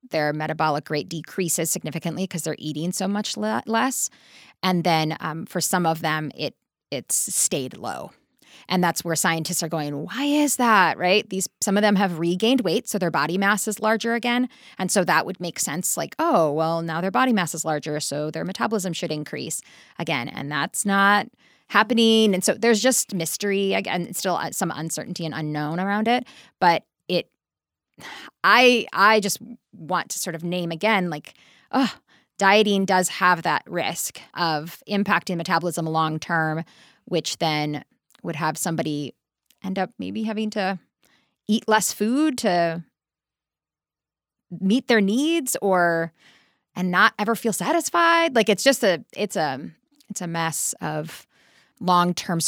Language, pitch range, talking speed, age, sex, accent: English, 165-215 Hz, 160 wpm, 20-39, female, American